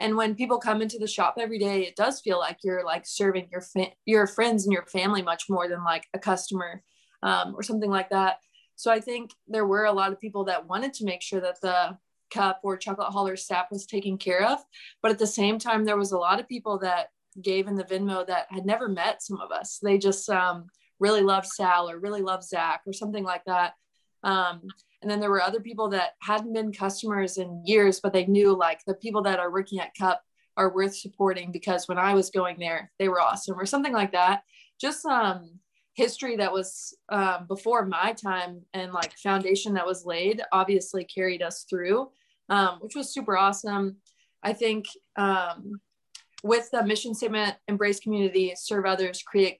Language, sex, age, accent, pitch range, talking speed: English, female, 20-39, American, 185-215 Hz, 205 wpm